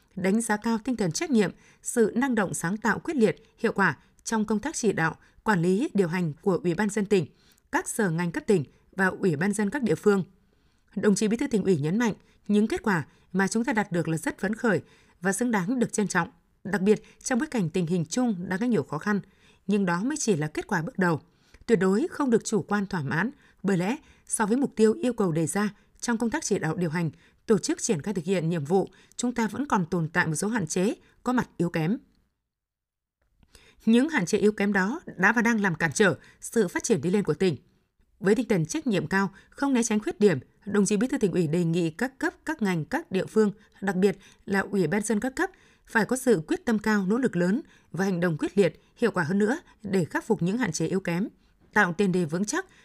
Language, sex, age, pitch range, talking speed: Vietnamese, female, 20-39, 185-225 Hz, 250 wpm